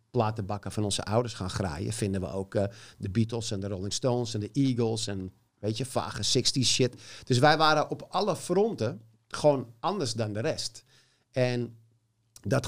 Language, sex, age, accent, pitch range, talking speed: Dutch, male, 50-69, Dutch, 105-125 Hz, 180 wpm